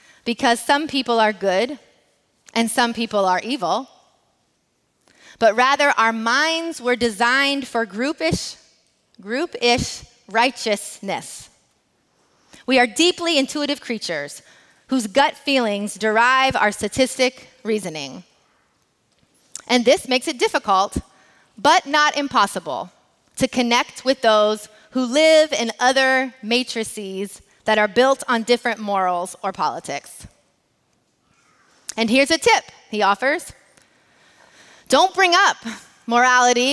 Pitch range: 215-275 Hz